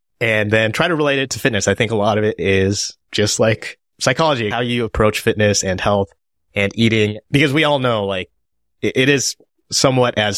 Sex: male